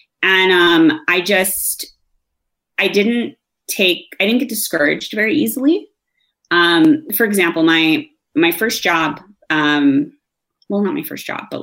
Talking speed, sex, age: 140 wpm, female, 20-39